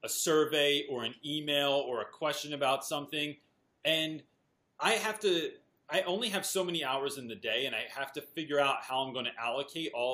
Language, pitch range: English, 130-170 Hz